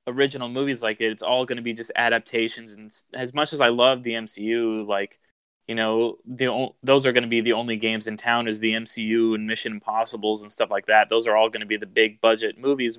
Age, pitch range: 20-39, 110-120 Hz